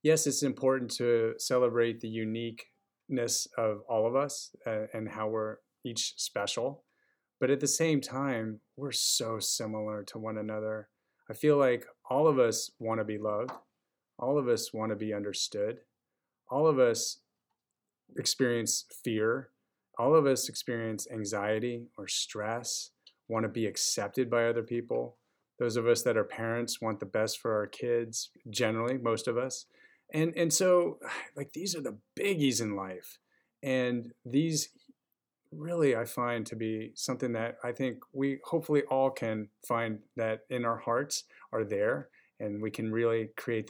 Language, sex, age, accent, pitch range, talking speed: English, male, 30-49, American, 110-130 Hz, 160 wpm